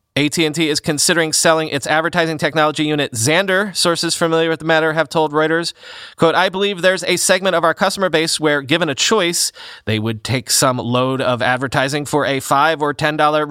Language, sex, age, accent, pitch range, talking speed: English, male, 30-49, American, 135-170 Hz, 190 wpm